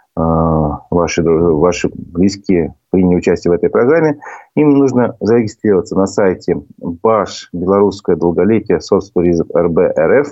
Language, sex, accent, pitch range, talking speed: Russian, male, native, 90-125 Hz, 105 wpm